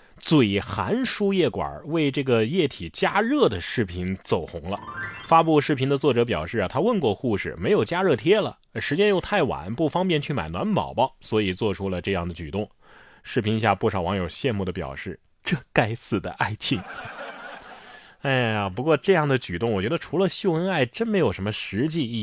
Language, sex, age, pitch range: Chinese, male, 20-39, 100-160 Hz